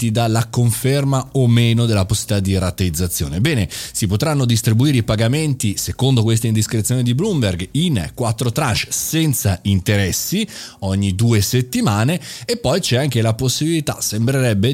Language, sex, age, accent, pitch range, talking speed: Italian, male, 30-49, native, 100-130 Hz, 140 wpm